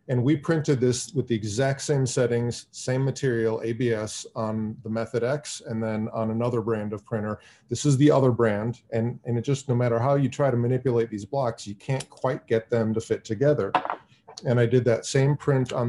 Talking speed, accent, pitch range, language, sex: 210 wpm, American, 110-130 Hz, English, male